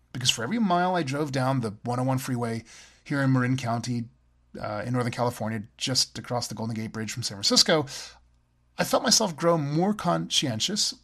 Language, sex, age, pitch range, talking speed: English, male, 30-49, 120-175 Hz, 180 wpm